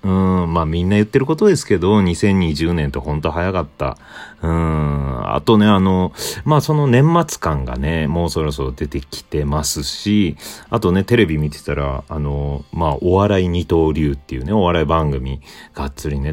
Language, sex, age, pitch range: Japanese, male, 40-59, 70-100 Hz